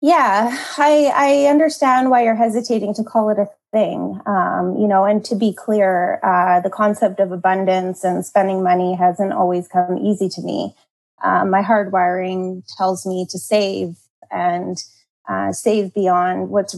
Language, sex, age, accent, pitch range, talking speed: English, female, 20-39, American, 185-230 Hz, 160 wpm